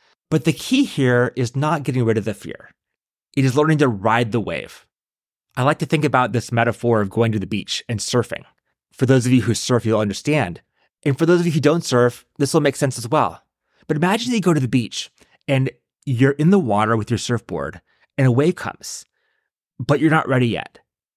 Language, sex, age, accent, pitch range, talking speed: English, male, 30-49, American, 115-145 Hz, 220 wpm